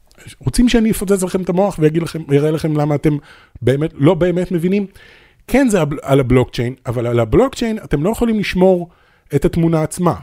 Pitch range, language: 125-180 Hz, Hebrew